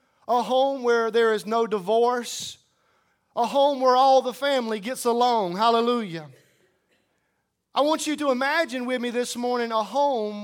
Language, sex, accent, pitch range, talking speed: English, male, American, 225-255 Hz, 155 wpm